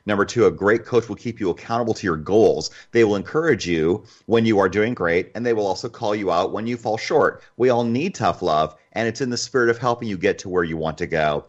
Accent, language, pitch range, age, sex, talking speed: American, English, 90-115 Hz, 30-49, male, 270 wpm